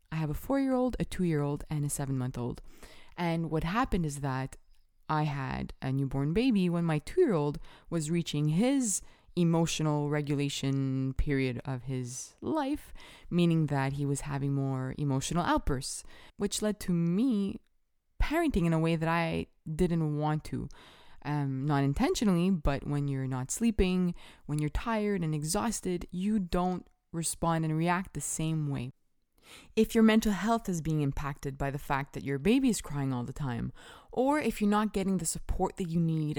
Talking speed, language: 165 wpm, English